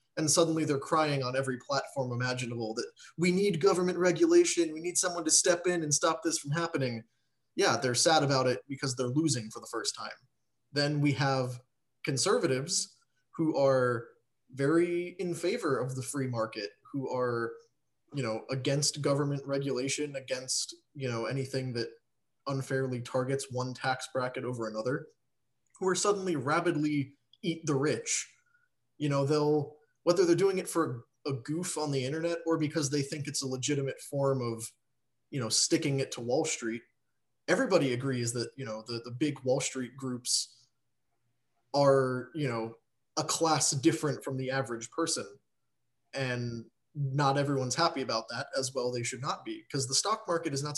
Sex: male